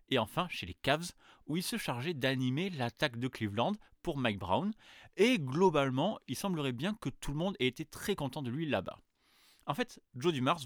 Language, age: French, 30-49